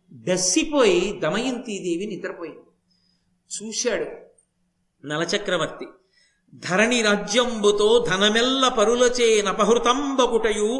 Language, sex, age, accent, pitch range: Telugu, male, 50-69, native, 200-260 Hz